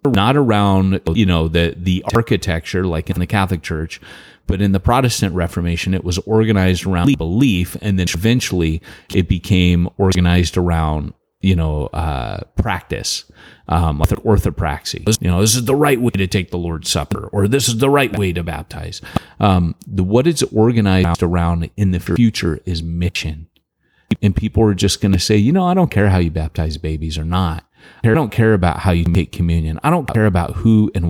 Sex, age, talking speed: male, 30-49, 190 wpm